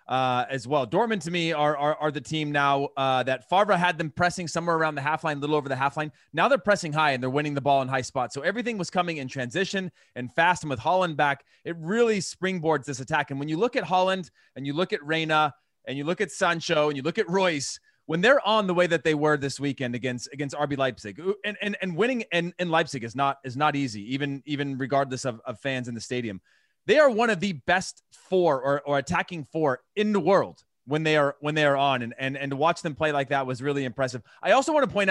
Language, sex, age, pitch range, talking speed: English, male, 30-49, 135-180 Hz, 260 wpm